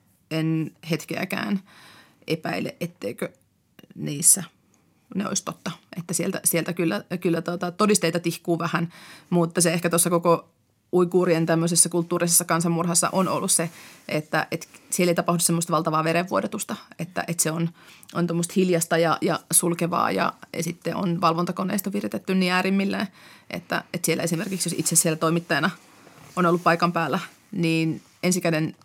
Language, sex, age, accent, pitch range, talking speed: Finnish, female, 30-49, native, 170-195 Hz, 145 wpm